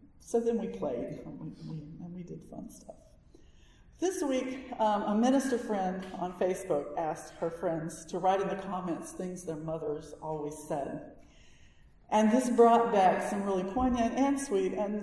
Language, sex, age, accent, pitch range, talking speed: English, female, 50-69, American, 165-225 Hz, 165 wpm